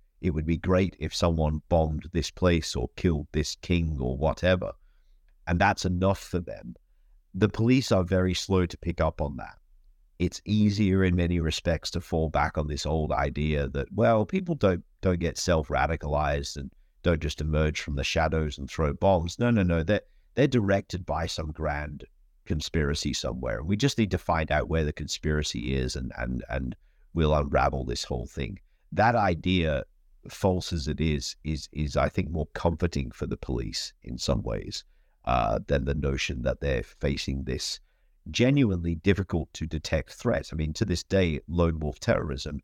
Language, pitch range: English, 75-90 Hz